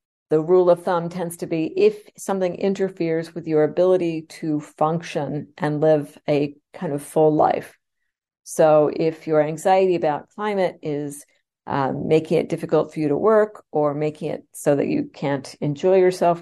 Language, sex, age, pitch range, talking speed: English, female, 50-69, 150-185 Hz, 170 wpm